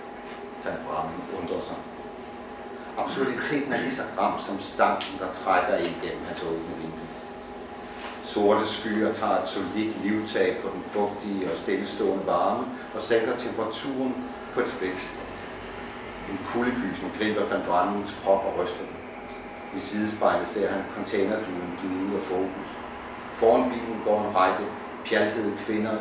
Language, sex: English, male